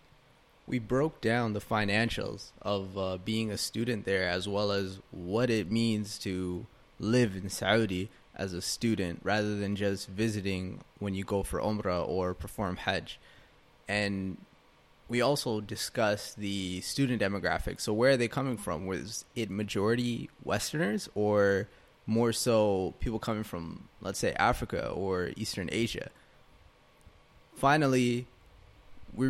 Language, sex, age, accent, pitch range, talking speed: English, male, 20-39, American, 95-115 Hz, 135 wpm